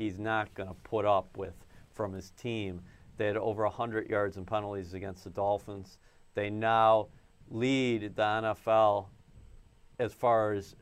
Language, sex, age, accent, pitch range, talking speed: English, male, 50-69, American, 100-125 Hz, 155 wpm